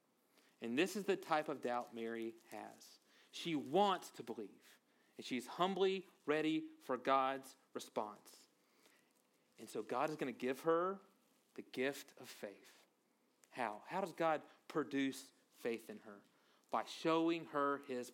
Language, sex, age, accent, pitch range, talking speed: English, male, 40-59, American, 130-185 Hz, 145 wpm